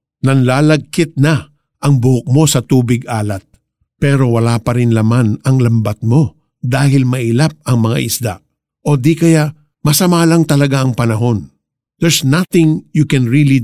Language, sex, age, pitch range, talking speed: Filipino, male, 50-69, 120-155 Hz, 145 wpm